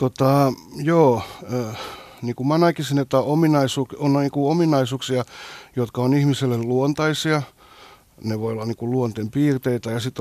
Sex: male